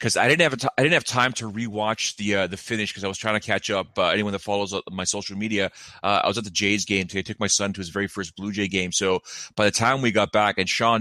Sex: male